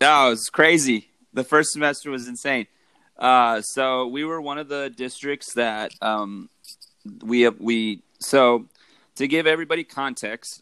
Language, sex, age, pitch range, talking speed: English, male, 30-49, 105-125 Hz, 155 wpm